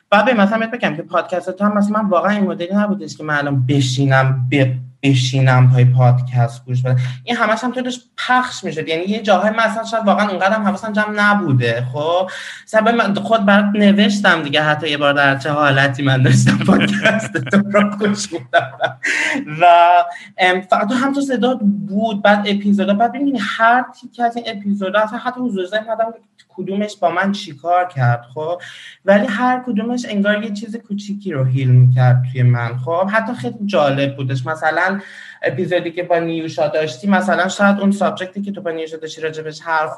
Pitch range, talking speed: 155-210 Hz, 170 wpm